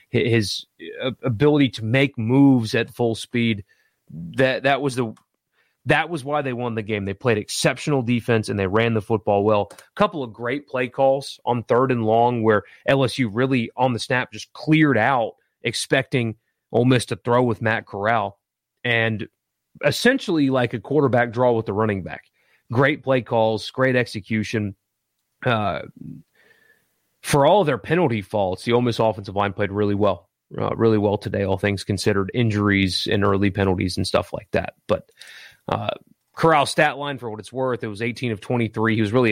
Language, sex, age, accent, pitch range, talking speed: English, male, 30-49, American, 110-130 Hz, 180 wpm